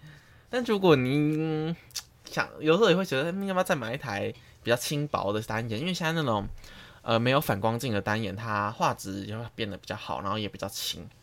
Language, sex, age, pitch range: Chinese, male, 20-39, 110-145 Hz